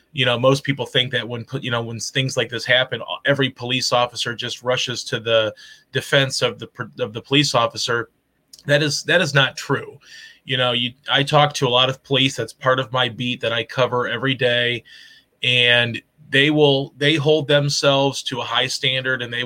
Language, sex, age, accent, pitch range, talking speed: English, male, 30-49, American, 120-135 Hz, 205 wpm